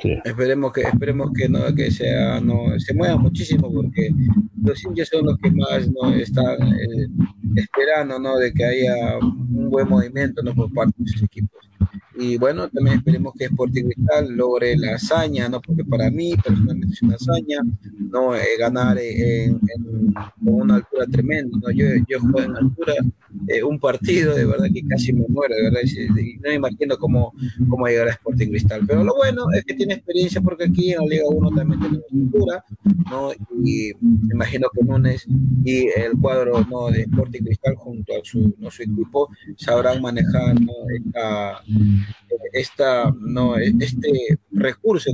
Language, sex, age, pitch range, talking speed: Spanish, male, 30-49, 110-130 Hz, 175 wpm